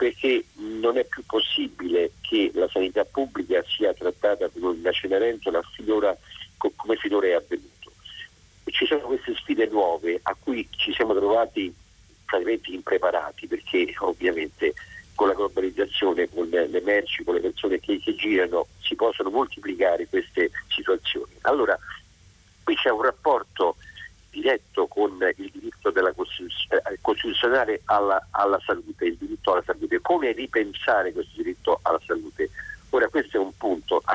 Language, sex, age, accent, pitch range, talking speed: Italian, male, 50-69, native, 335-430 Hz, 135 wpm